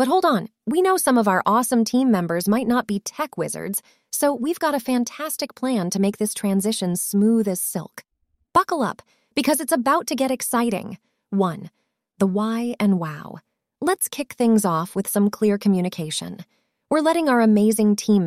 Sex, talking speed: female, 180 wpm